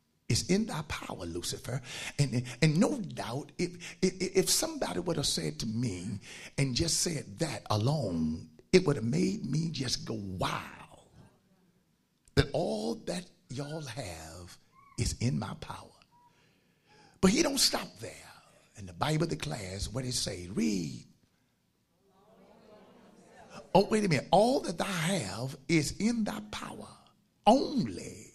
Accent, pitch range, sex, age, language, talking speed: American, 120-195 Hz, male, 60-79, English, 140 wpm